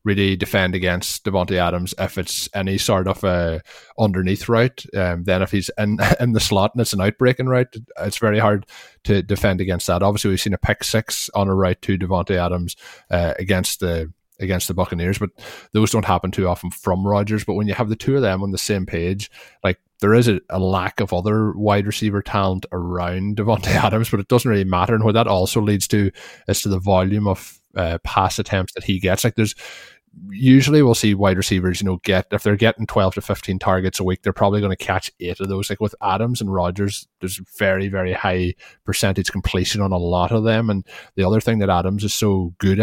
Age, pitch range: 20-39, 95-110 Hz